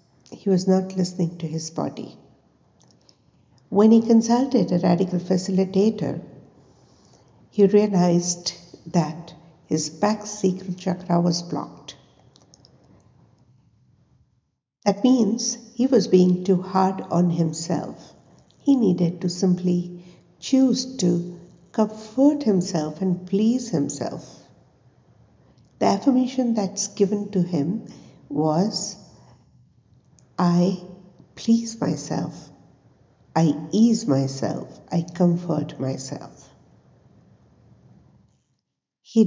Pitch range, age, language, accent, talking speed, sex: 170-215 Hz, 60-79, English, Indian, 90 wpm, female